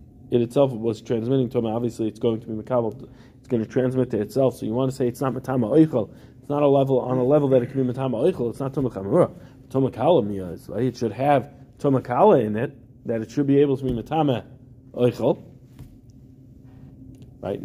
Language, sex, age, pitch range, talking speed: English, male, 20-39, 120-135 Hz, 200 wpm